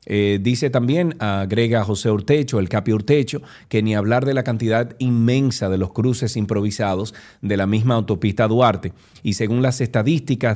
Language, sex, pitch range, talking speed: Spanish, male, 105-130 Hz, 165 wpm